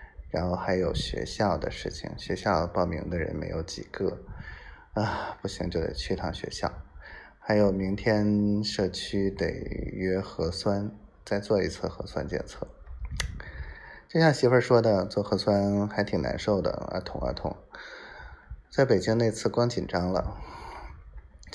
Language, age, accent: Chinese, 20-39, native